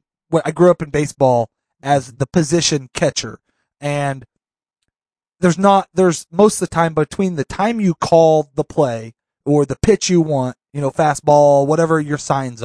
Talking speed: 165 wpm